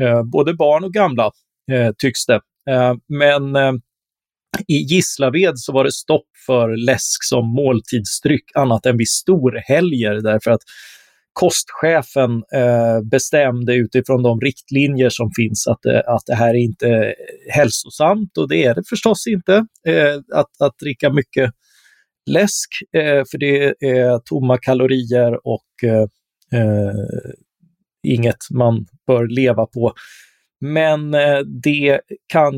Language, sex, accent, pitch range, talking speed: Swedish, male, native, 120-145 Hz, 135 wpm